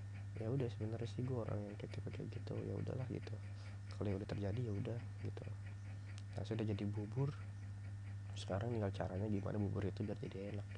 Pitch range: 100-105 Hz